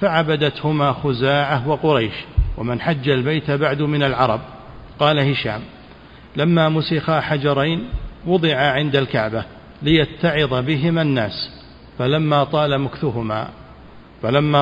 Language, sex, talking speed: Arabic, male, 100 wpm